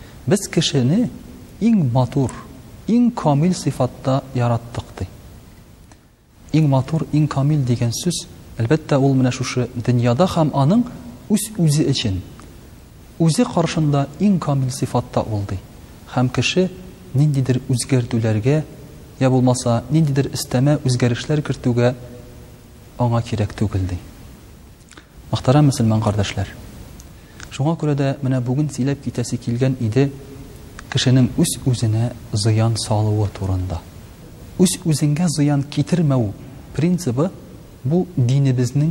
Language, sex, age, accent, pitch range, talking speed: Russian, male, 40-59, Turkish, 120-155 Hz, 90 wpm